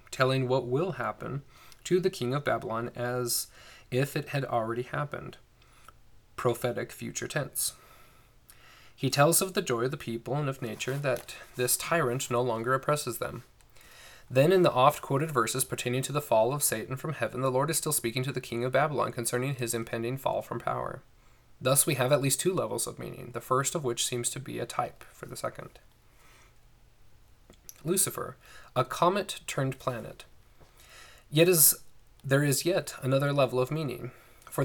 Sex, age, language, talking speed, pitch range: male, 20-39, English, 175 wpm, 120-145 Hz